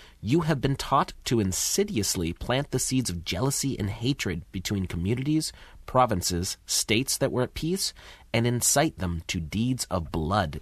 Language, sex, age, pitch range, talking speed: English, male, 30-49, 95-135 Hz, 160 wpm